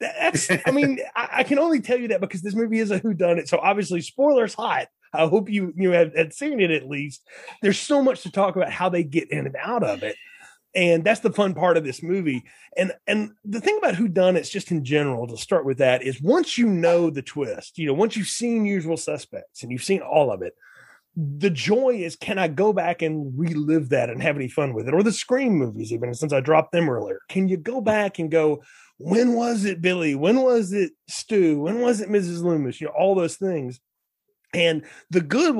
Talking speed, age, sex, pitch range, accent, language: 230 wpm, 30-49, male, 150-215 Hz, American, English